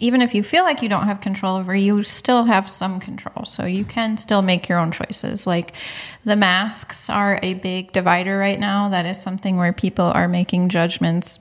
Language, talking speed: English, 210 wpm